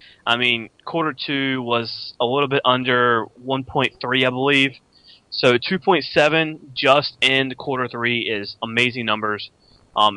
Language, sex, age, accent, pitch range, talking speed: English, male, 20-39, American, 115-145 Hz, 130 wpm